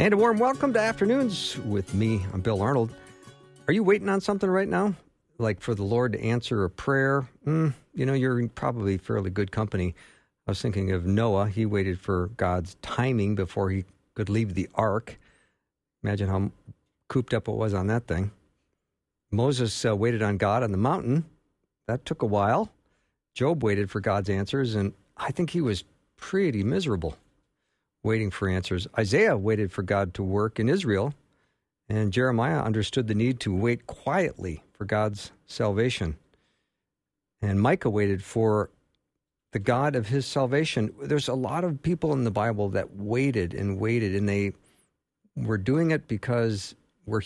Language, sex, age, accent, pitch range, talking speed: English, male, 50-69, American, 100-130 Hz, 170 wpm